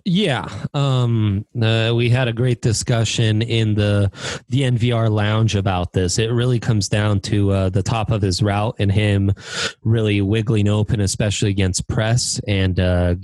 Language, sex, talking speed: English, male, 165 wpm